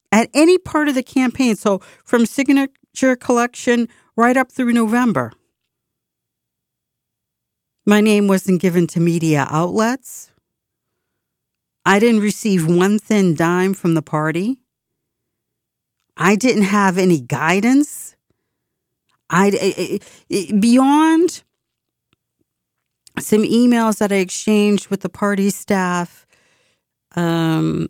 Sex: female